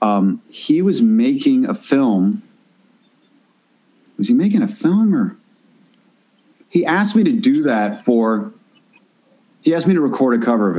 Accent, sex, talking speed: American, male, 150 wpm